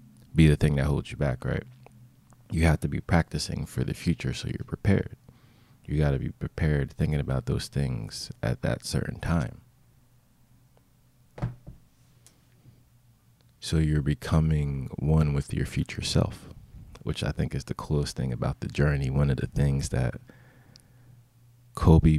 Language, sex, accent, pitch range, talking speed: English, male, American, 75-125 Hz, 150 wpm